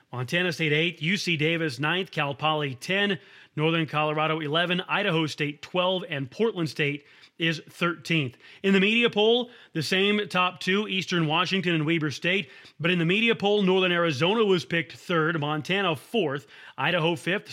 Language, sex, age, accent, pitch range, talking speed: English, male, 30-49, American, 155-190 Hz, 160 wpm